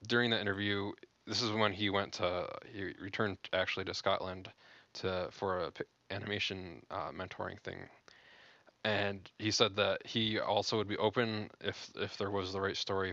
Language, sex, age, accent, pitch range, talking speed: English, male, 20-39, American, 95-110 Hz, 175 wpm